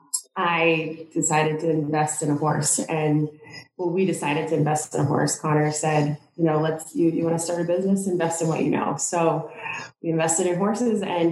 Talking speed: 200 wpm